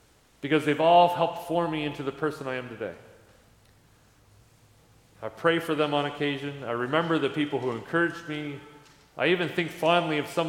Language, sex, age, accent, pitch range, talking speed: English, male, 40-59, American, 130-165 Hz, 175 wpm